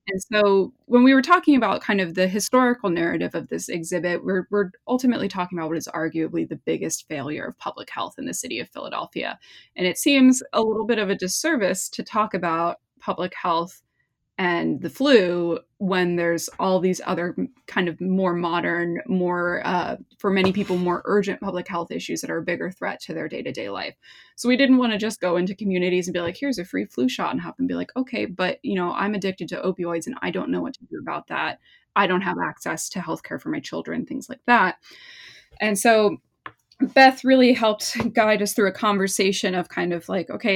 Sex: female